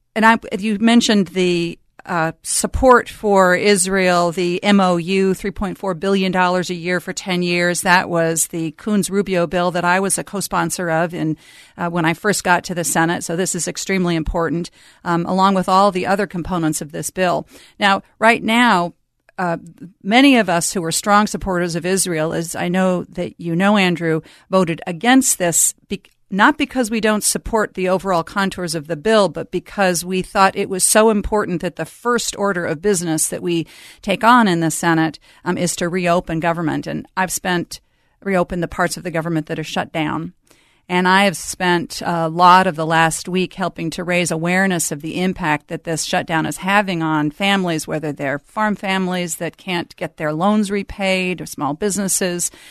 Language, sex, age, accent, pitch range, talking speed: English, female, 40-59, American, 170-195 Hz, 190 wpm